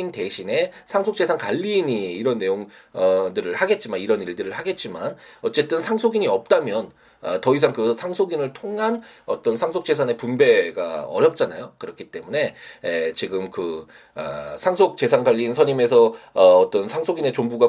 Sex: male